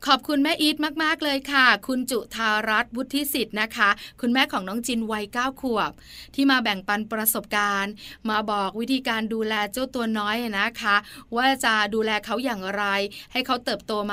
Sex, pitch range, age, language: female, 205-245 Hz, 20-39, Thai